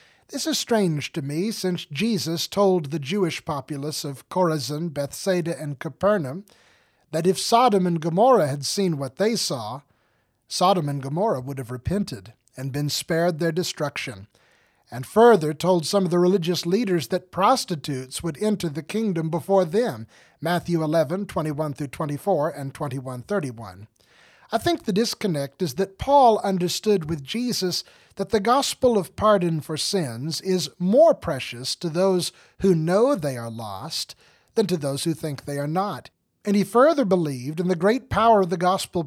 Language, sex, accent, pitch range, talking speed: English, male, American, 150-205 Hz, 160 wpm